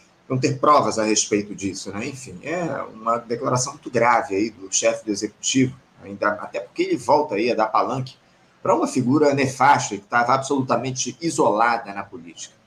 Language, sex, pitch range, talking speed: Portuguese, male, 115-145 Hz, 175 wpm